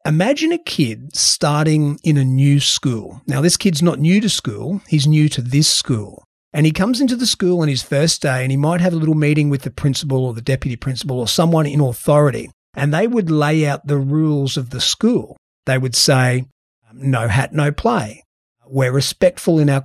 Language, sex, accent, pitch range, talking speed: English, male, Australian, 135-175 Hz, 210 wpm